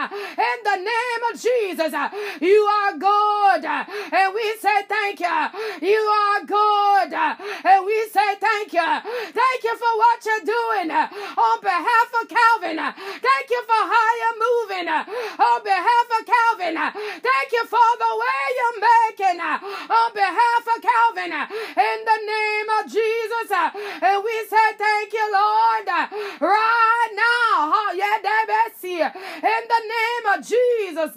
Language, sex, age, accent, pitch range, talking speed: English, female, 30-49, American, 340-435 Hz, 125 wpm